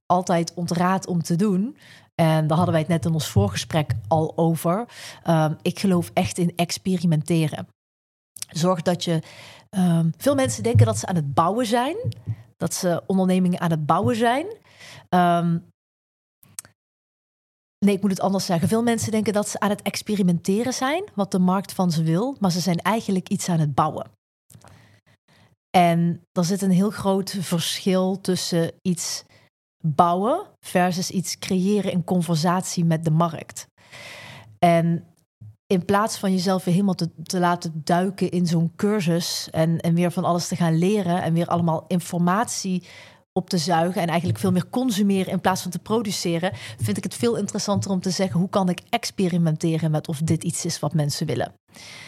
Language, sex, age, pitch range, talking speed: Dutch, female, 30-49, 165-190 Hz, 170 wpm